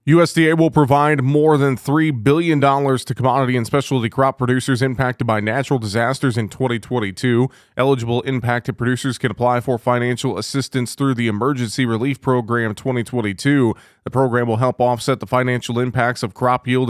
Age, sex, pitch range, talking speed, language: 30-49, male, 115-135 Hz, 155 wpm, English